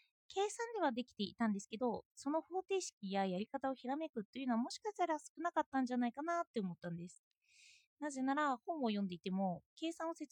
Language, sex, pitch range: Japanese, female, 220-320 Hz